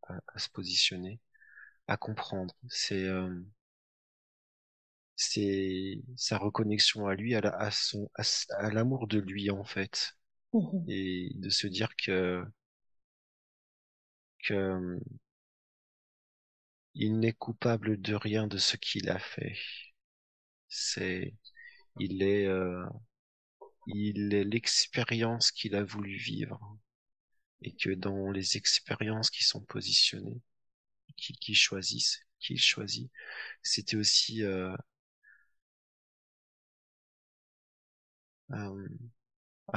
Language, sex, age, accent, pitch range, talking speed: French, male, 30-49, French, 95-115 Hz, 105 wpm